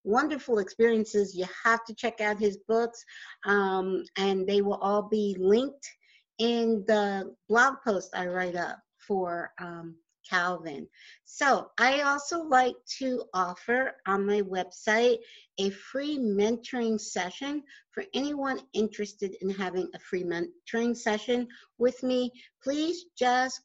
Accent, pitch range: American, 190-240 Hz